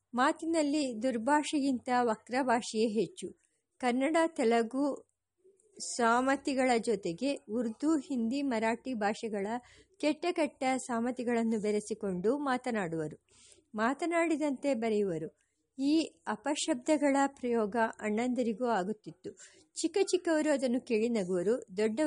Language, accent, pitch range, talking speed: English, Indian, 225-290 Hz, 65 wpm